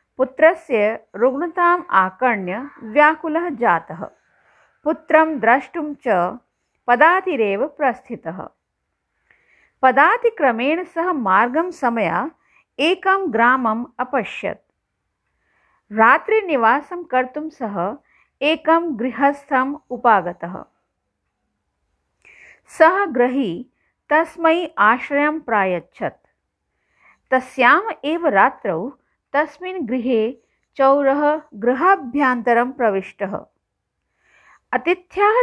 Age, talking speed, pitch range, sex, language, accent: 50-69, 40 wpm, 225-320 Hz, female, Hindi, native